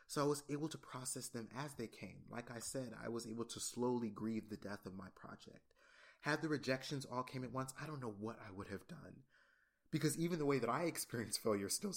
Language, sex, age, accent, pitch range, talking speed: English, male, 30-49, American, 115-145 Hz, 240 wpm